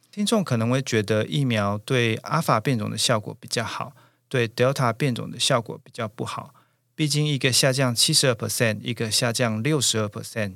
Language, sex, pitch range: Chinese, male, 115-145 Hz